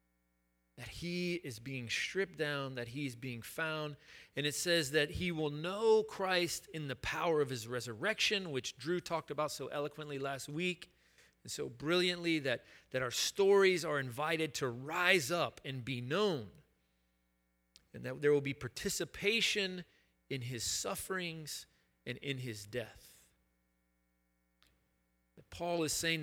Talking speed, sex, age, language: 150 wpm, male, 40-59, English